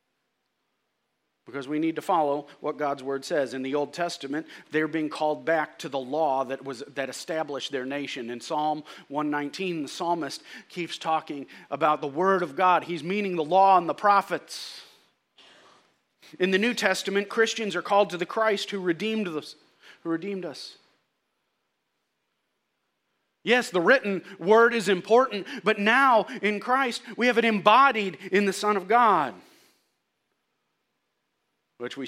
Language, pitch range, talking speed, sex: English, 150-210 Hz, 155 wpm, male